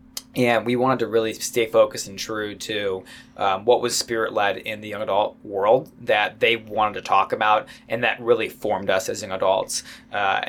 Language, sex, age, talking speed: English, male, 20-39, 195 wpm